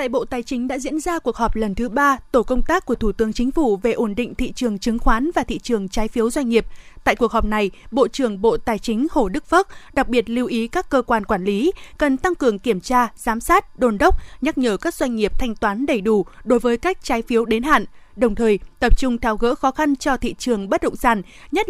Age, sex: 20-39, female